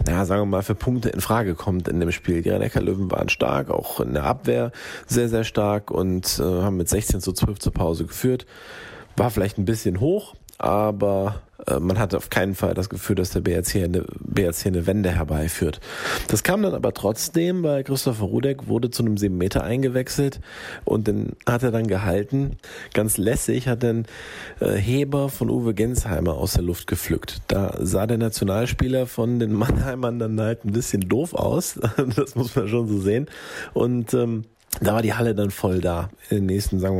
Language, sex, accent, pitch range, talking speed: German, male, German, 95-120 Hz, 190 wpm